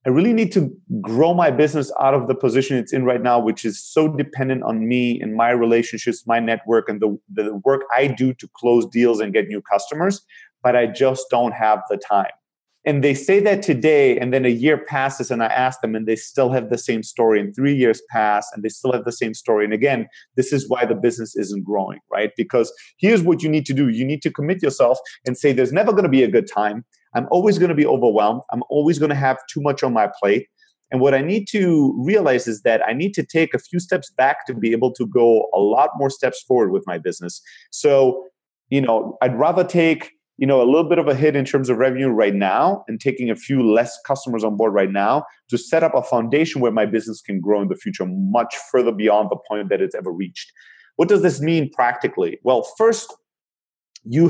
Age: 30-49